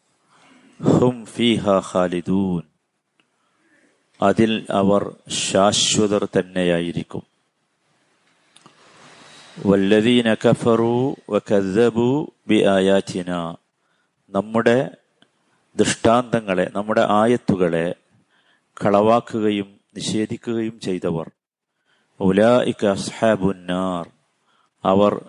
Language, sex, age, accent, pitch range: Malayalam, male, 50-69, native, 95-115 Hz